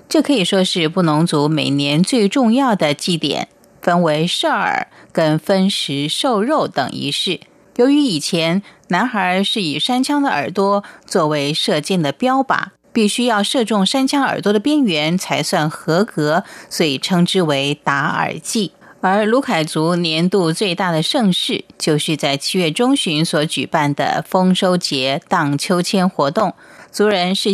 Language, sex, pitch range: Chinese, female, 155-210 Hz